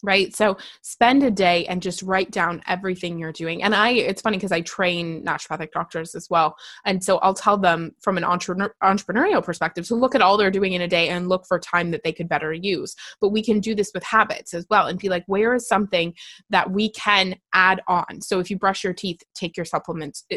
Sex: female